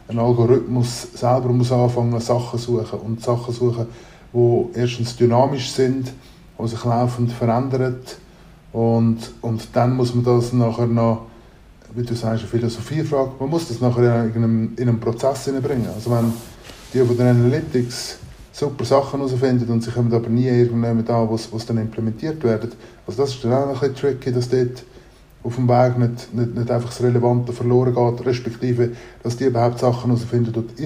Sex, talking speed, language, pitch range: male, 180 wpm, German, 115-130 Hz